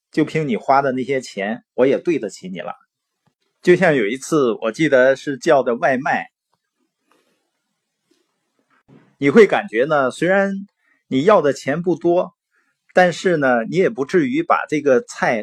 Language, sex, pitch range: Chinese, male, 130-185 Hz